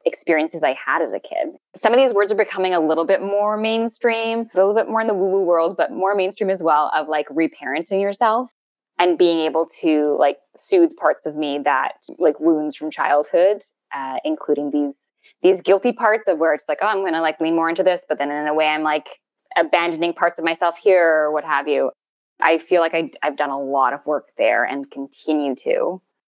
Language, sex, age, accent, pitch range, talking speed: English, female, 10-29, American, 155-215 Hz, 215 wpm